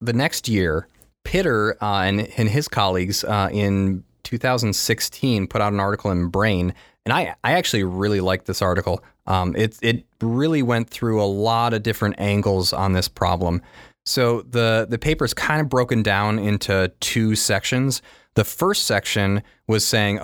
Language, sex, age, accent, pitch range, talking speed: English, male, 30-49, American, 100-120 Hz, 170 wpm